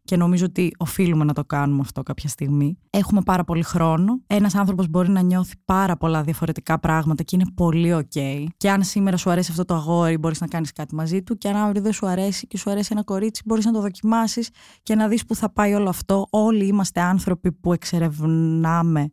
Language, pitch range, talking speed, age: Greek, 165-210 Hz, 215 wpm, 20-39